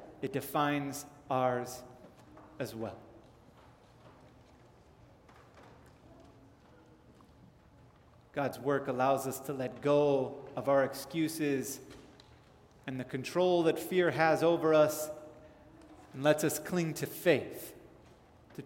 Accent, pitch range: American, 130-150 Hz